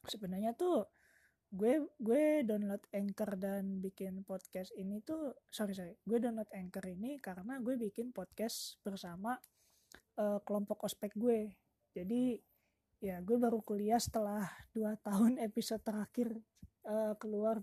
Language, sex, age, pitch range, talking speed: Malay, female, 20-39, 195-230 Hz, 130 wpm